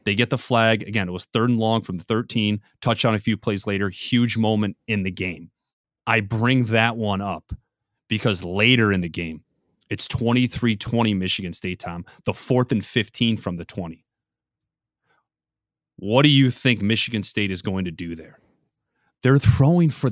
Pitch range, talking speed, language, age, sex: 100-125 Hz, 175 wpm, English, 30-49, male